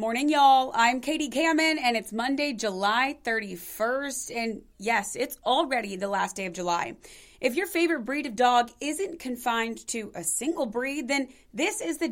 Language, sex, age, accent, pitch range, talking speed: English, female, 30-49, American, 215-285 Hz, 180 wpm